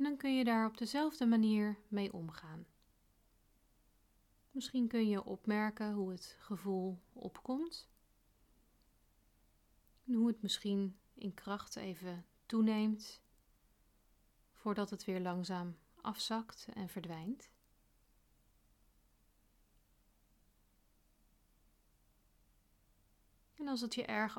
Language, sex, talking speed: Dutch, female, 95 wpm